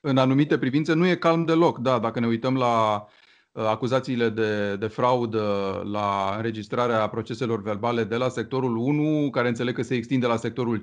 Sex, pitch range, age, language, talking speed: male, 115-140 Hz, 30-49, Romanian, 165 wpm